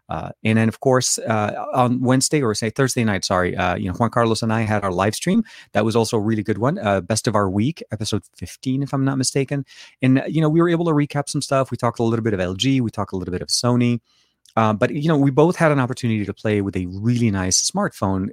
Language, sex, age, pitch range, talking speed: English, male, 30-49, 100-130 Hz, 270 wpm